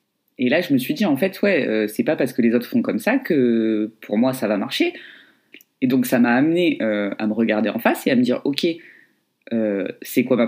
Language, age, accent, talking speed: French, 20-39, French, 260 wpm